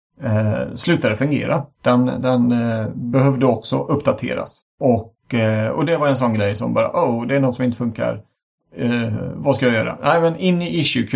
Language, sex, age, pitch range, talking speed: Swedish, male, 30-49, 110-140 Hz, 200 wpm